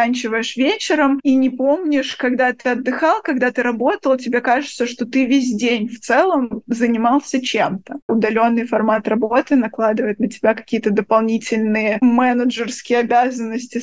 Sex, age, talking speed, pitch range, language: female, 20-39, 140 wpm, 225-255 Hz, Russian